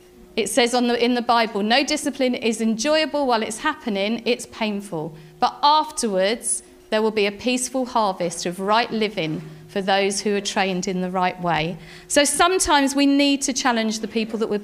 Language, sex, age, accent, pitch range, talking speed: English, female, 40-59, British, 200-270 Hz, 190 wpm